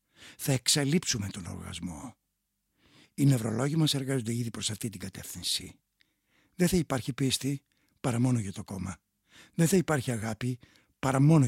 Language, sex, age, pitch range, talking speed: Greek, male, 60-79, 105-145 Hz, 145 wpm